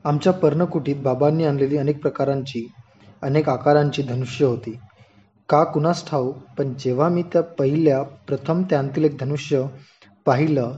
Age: 20-39